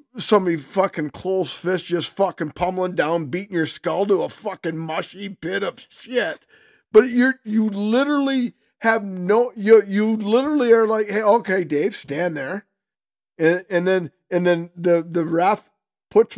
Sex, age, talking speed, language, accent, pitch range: male, 50-69, 160 wpm, English, American, 175-230 Hz